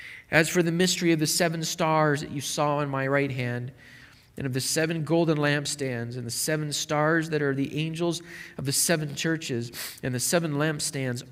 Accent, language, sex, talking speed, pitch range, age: American, English, male, 195 wpm, 125-160 Hz, 40-59